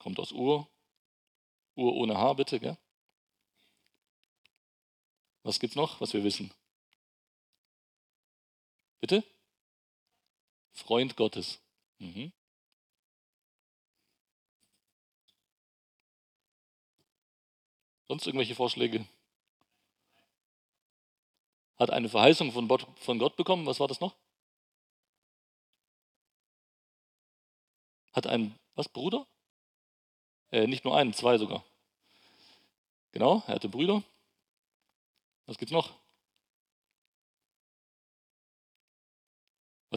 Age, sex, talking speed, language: 40-59, male, 75 wpm, German